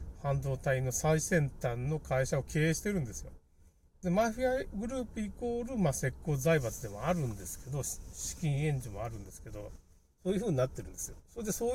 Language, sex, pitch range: Japanese, male, 105-170 Hz